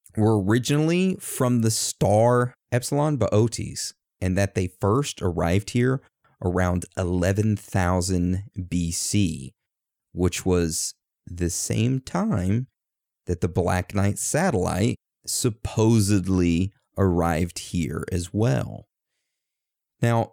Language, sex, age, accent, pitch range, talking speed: English, male, 30-49, American, 90-125 Hz, 95 wpm